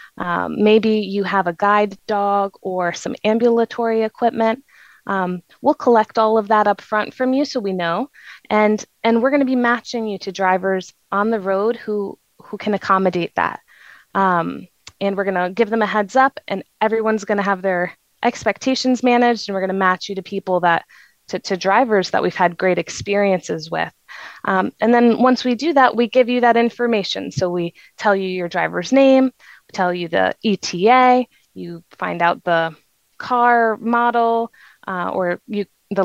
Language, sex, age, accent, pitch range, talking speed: English, female, 20-39, American, 190-240 Hz, 180 wpm